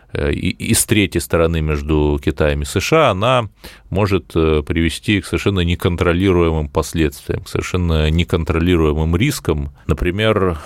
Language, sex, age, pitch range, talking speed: Russian, male, 30-49, 75-95 Hz, 115 wpm